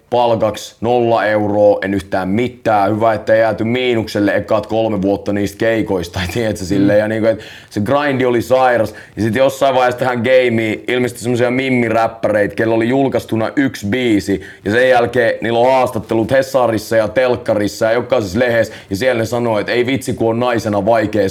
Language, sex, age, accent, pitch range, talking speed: Finnish, male, 30-49, native, 105-125 Hz, 165 wpm